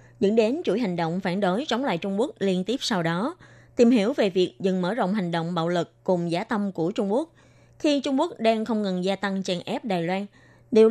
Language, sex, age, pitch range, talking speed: Vietnamese, female, 20-39, 180-245 Hz, 250 wpm